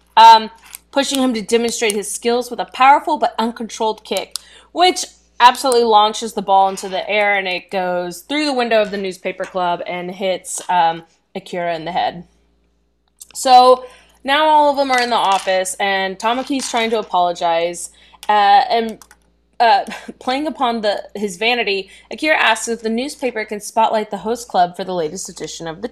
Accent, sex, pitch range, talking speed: American, female, 180-235 Hz, 175 wpm